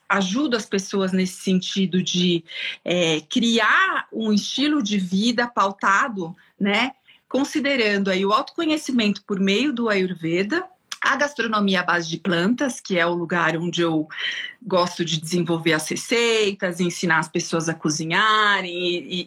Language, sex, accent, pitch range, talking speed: Portuguese, female, Brazilian, 185-275 Hz, 135 wpm